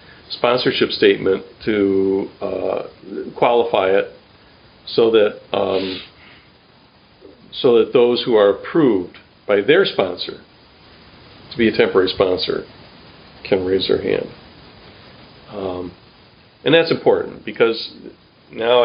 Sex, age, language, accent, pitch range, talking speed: male, 50-69, English, American, 100-140 Hz, 105 wpm